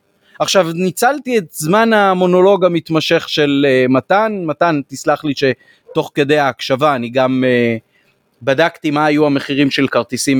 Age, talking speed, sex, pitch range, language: 30-49, 140 wpm, male, 130-195 Hz, Hebrew